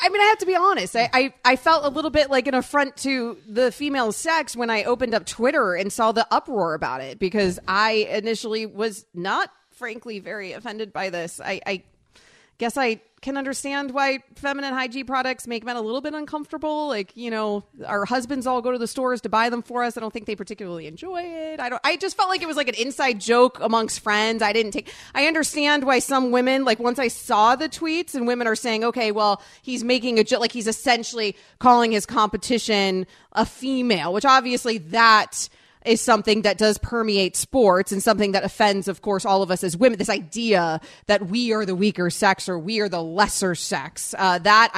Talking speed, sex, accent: 215 wpm, female, American